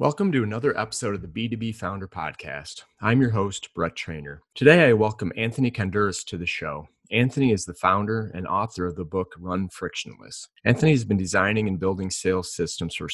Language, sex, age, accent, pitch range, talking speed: English, male, 30-49, American, 85-110 Hz, 190 wpm